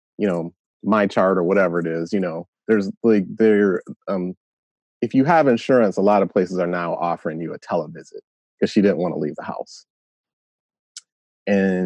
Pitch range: 100-155 Hz